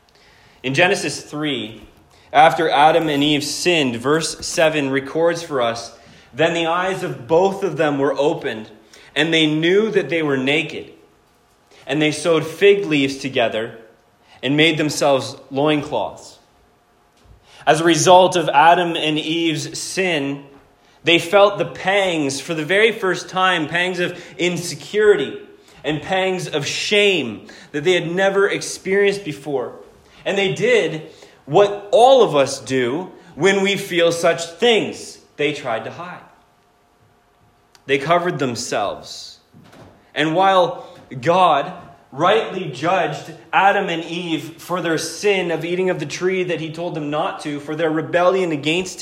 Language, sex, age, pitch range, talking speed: English, male, 30-49, 145-185 Hz, 140 wpm